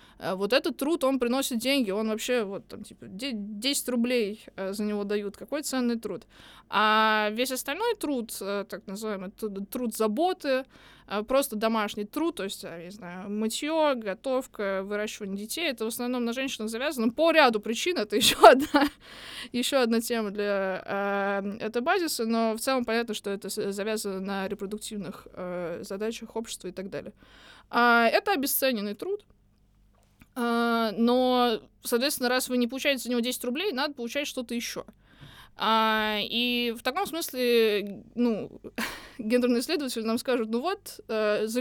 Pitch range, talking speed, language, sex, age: 210-260 Hz, 150 wpm, Russian, female, 20-39